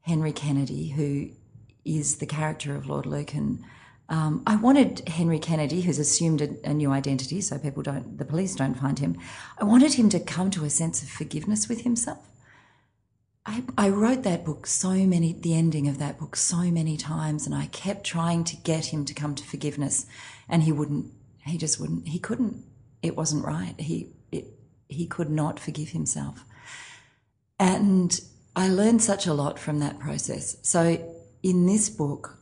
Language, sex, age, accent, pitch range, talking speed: English, female, 40-59, Australian, 145-200 Hz, 175 wpm